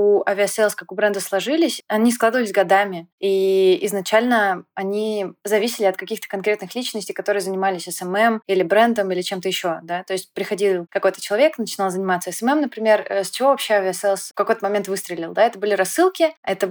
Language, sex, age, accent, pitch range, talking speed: Russian, female, 20-39, native, 185-220 Hz, 170 wpm